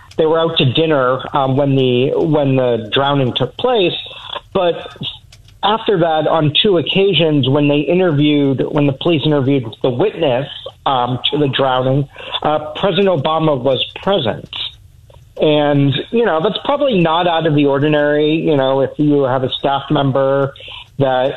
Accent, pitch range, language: American, 130-160 Hz, English